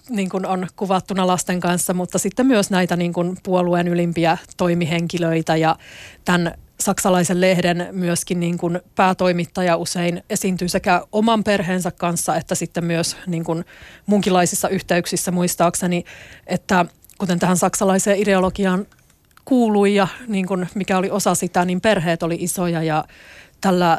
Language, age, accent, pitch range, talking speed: Finnish, 30-49, native, 170-190 Hz, 130 wpm